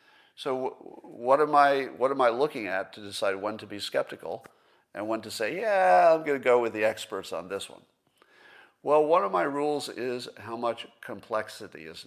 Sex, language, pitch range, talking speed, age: male, English, 105-150 Hz, 200 wpm, 50-69